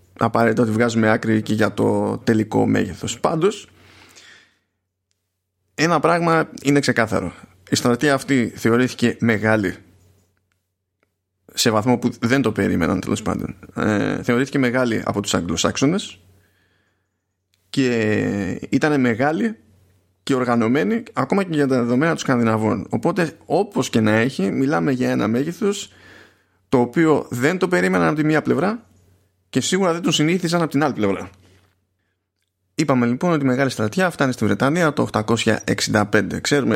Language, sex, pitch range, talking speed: Greek, male, 95-135 Hz, 135 wpm